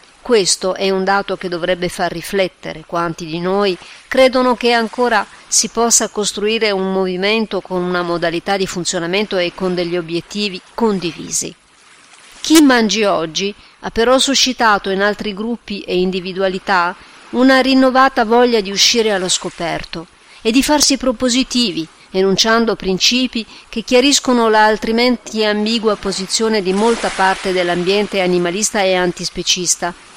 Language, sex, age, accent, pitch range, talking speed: Italian, female, 40-59, native, 180-225 Hz, 130 wpm